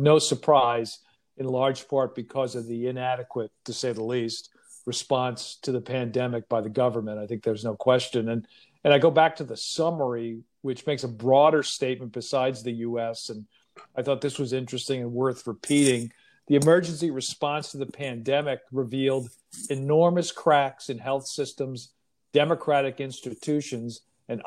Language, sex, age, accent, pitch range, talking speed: English, male, 50-69, American, 125-145 Hz, 160 wpm